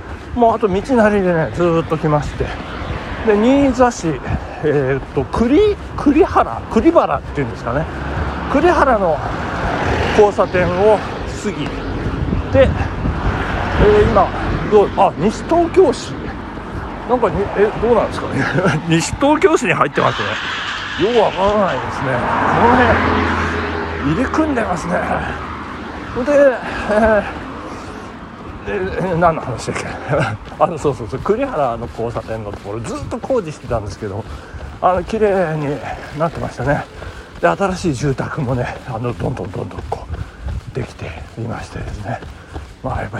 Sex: male